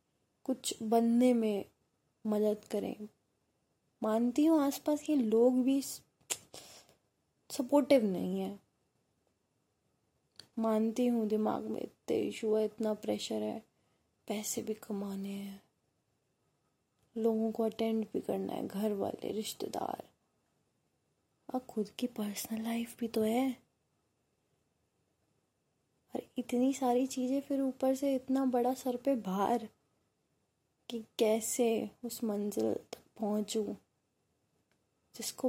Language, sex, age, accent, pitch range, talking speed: Hindi, female, 20-39, native, 210-255 Hz, 110 wpm